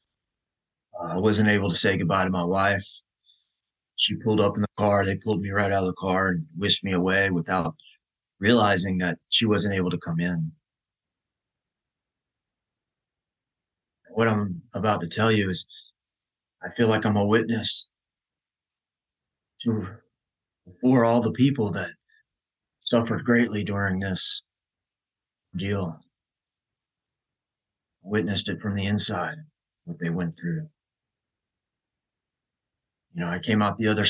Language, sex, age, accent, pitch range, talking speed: English, male, 30-49, American, 90-110 Hz, 135 wpm